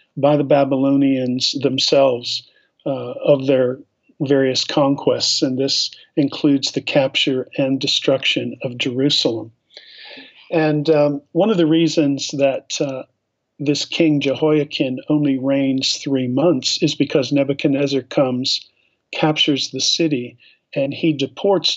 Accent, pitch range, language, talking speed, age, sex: American, 130-155 Hz, English, 120 wpm, 50-69, male